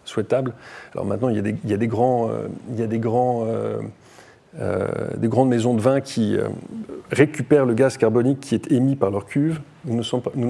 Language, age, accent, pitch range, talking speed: French, 30-49, French, 115-140 Hz, 135 wpm